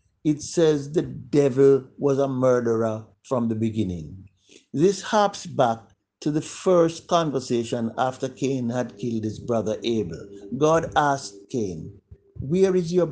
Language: English